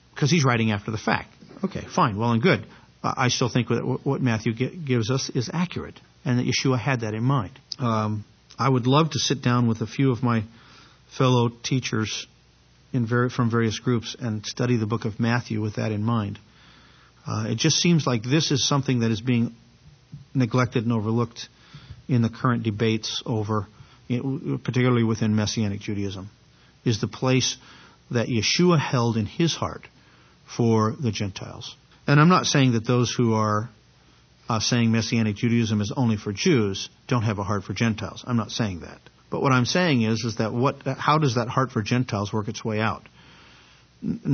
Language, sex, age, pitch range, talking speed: English, male, 50-69, 110-130 Hz, 180 wpm